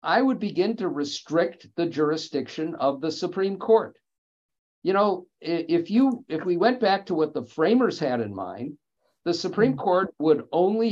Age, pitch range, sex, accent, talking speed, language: 50-69, 150-210 Hz, male, American, 170 wpm, English